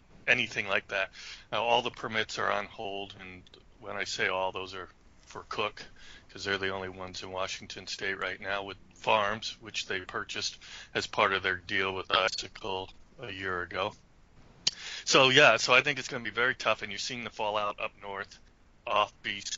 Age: 30-49